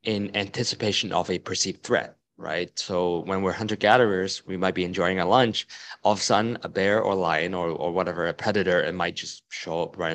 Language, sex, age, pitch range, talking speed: English, male, 20-39, 95-115 Hz, 215 wpm